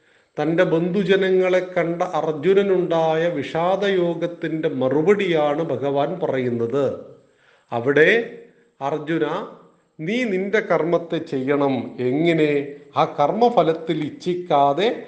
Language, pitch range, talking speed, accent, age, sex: Malayalam, 150-190 Hz, 70 wpm, native, 40-59, male